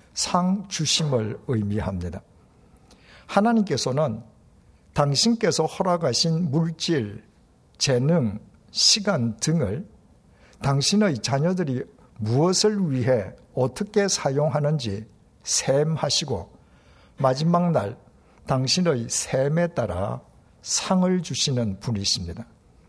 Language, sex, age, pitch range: Korean, male, 60-79, 115-175 Hz